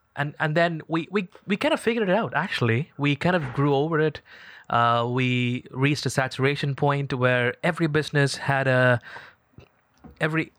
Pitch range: 120-145 Hz